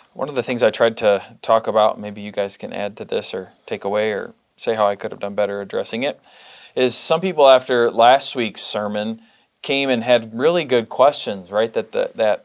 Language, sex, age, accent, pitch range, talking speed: English, male, 20-39, American, 105-155 Hz, 220 wpm